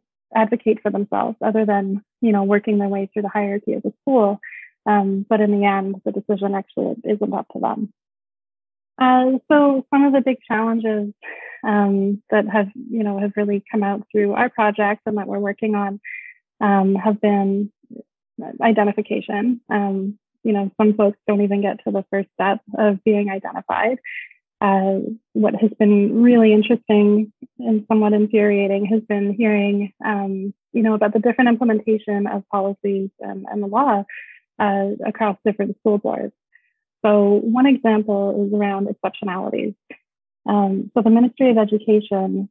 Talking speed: 160 wpm